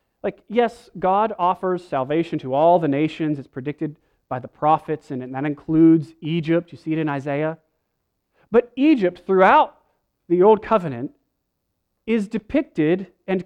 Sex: male